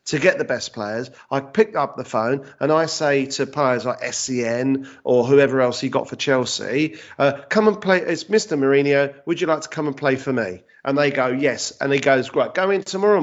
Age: 40-59